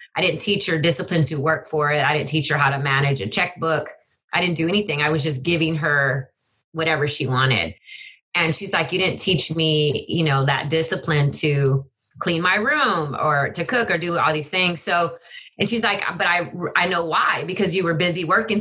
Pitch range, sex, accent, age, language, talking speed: 150-180 Hz, female, American, 30-49, English, 215 wpm